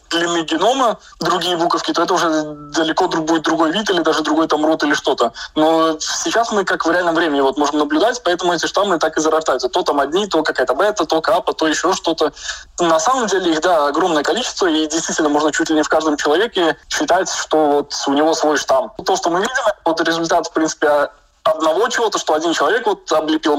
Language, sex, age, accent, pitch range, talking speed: Russian, male, 20-39, native, 150-170 Hz, 210 wpm